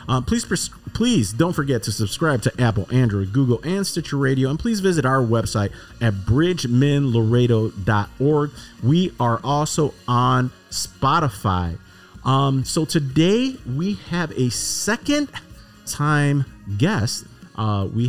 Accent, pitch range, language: American, 100-135 Hz, English